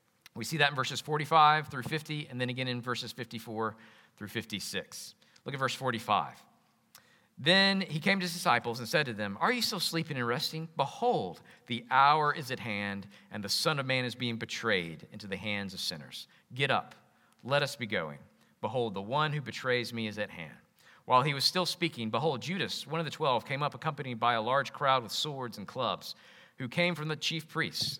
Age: 40-59